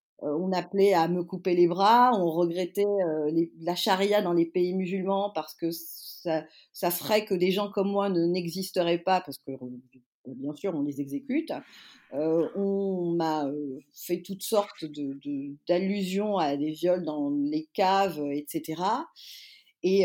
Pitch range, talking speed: 165-220 Hz, 170 wpm